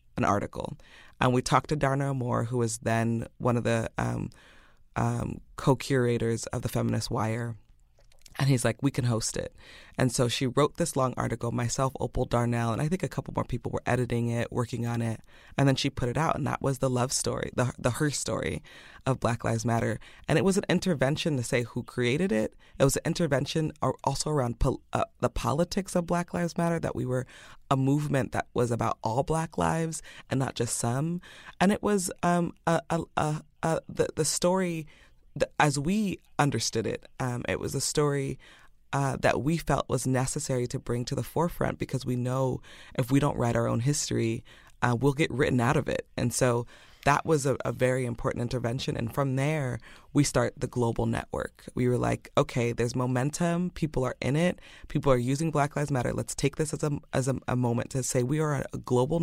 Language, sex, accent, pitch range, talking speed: English, female, American, 120-145 Hz, 210 wpm